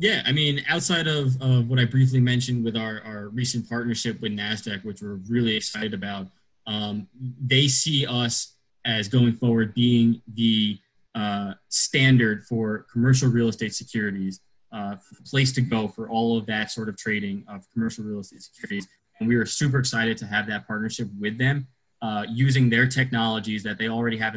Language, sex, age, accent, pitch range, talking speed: English, male, 20-39, American, 110-125 Hz, 180 wpm